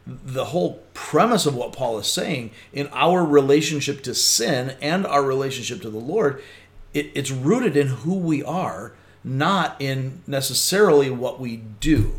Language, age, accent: English, 40-59, American